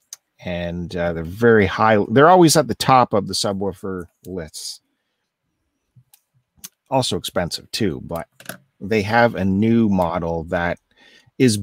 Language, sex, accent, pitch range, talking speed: English, male, American, 95-130 Hz, 130 wpm